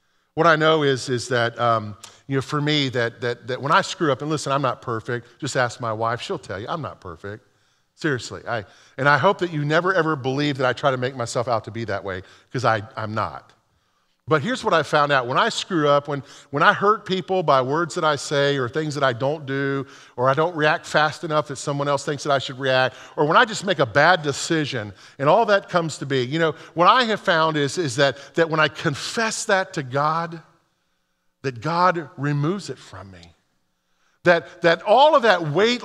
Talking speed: 235 wpm